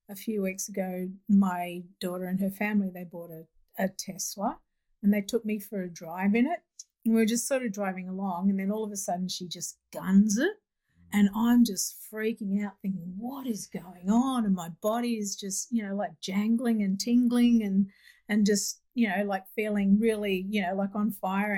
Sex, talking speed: female, 210 wpm